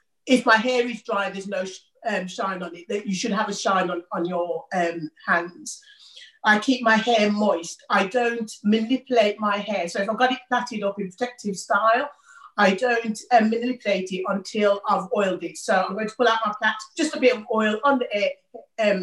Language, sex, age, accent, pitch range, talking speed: English, female, 40-59, British, 190-235 Hz, 205 wpm